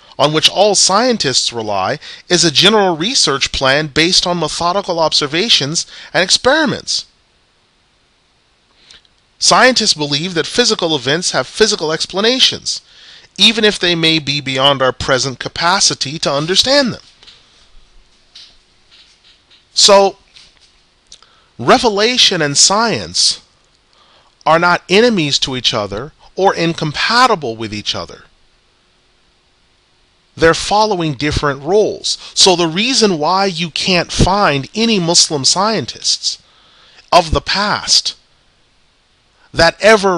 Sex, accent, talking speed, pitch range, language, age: male, American, 105 wpm, 140-185 Hz, English, 40-59